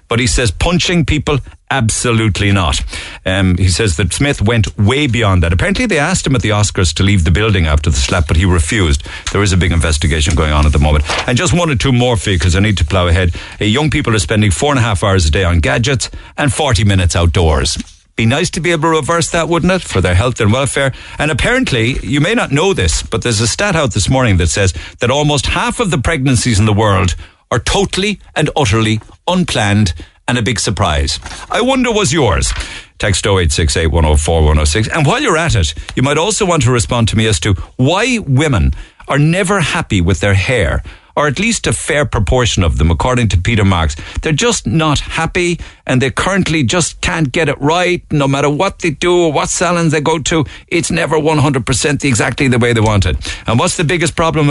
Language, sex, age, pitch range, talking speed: English, male, 60-79, 90-145 Hz, 220 wpm